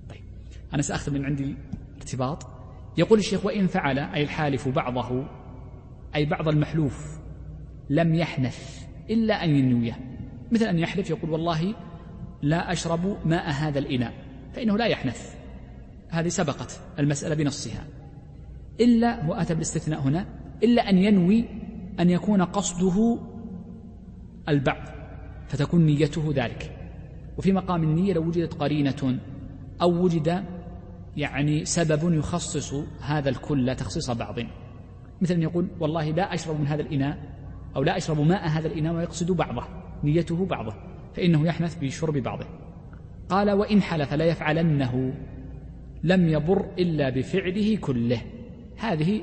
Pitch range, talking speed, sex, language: 135-170 Hz, 120 wpm, male, Arabic